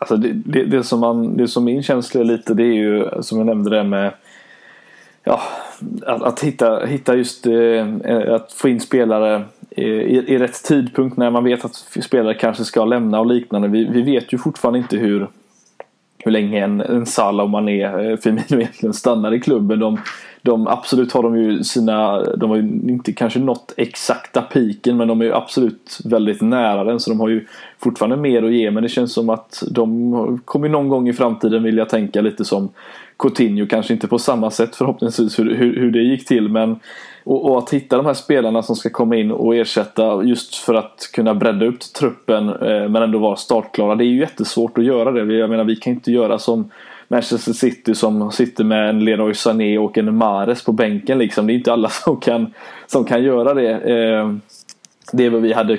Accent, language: native, Swedish